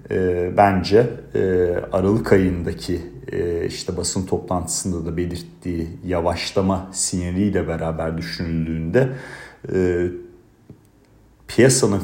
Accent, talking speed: native, 65 wpm